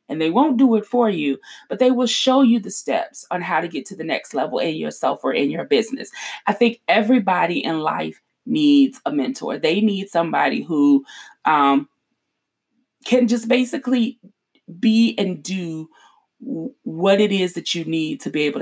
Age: 30-49